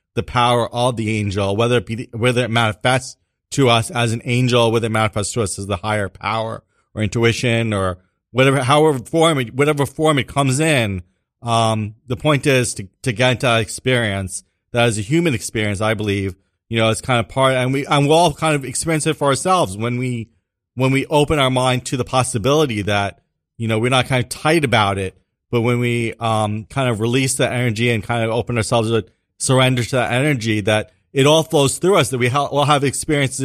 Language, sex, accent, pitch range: English, male, American, 110-130 Hz